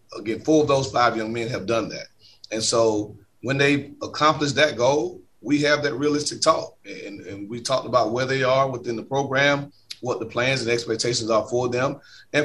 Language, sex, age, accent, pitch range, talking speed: English, male, 30-49, American, 110-135 Hz, 200 wpm